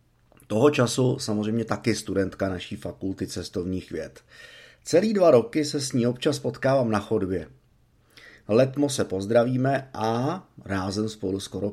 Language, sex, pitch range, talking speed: Czech, male, 105-135 Hz, 135 wpm